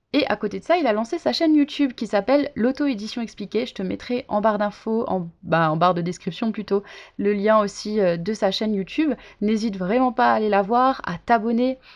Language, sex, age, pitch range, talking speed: French, female, 20-39, 200-250 Hz, 225 wpm